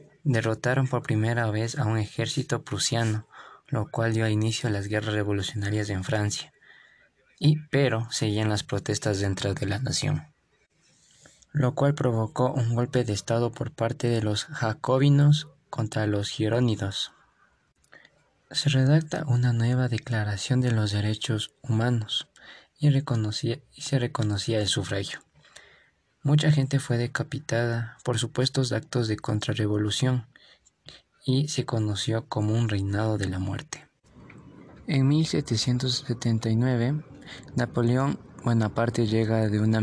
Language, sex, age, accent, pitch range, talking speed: Spanish, male, 20-39, Mexican, 110-130 Hz, 125 wpm